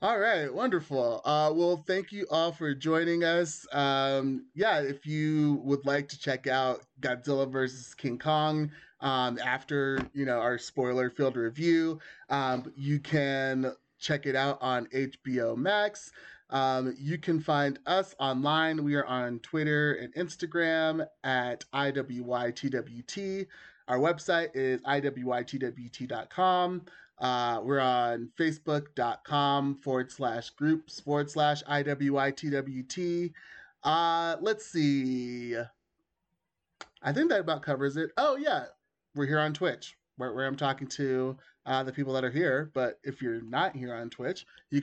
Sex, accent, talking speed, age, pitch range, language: male, American, 135 wpm, 30-49, 130-155 Hz, English